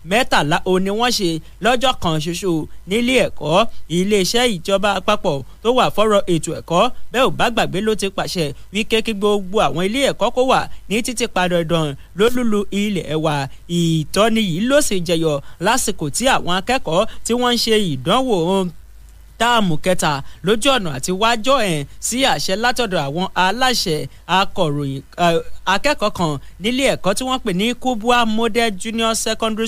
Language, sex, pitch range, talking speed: English, male, 180-240 Hz, 175 wpm